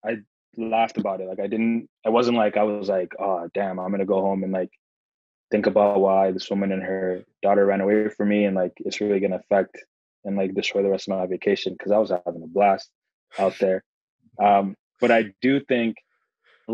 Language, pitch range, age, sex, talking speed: English, 95-110 Hz, 20-39, male, 225 wpm